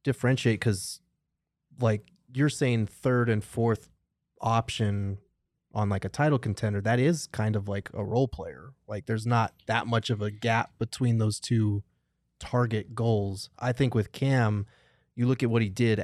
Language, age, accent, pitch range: English, 20-39, American, 100-115 Hz